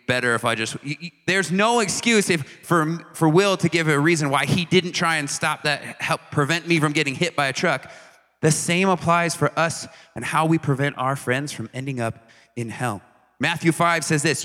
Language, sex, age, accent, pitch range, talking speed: English, male, 30-49, American, 120-165 Hz, 210 wpm